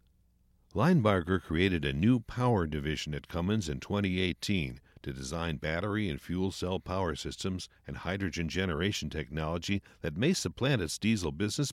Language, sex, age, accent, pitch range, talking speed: English, male, 60-79, American, 80-110 Hz, 145 wpm